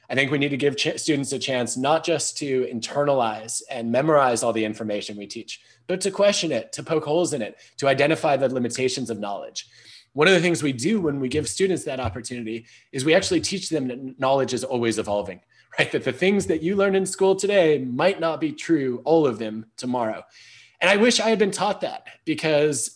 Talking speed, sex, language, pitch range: 220 wpm, male, English, 125-185 Hz